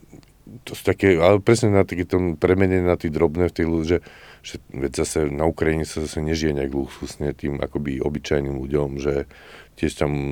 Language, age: Czech, 50-69